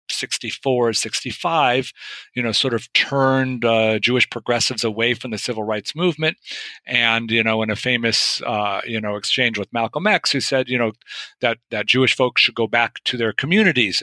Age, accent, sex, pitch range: 50-69, American, male, 110-130 Hz